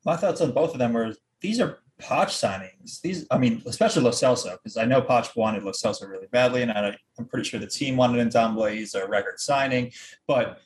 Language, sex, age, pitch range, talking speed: English, male, 20-39, 115-145 Hz, 230 wpm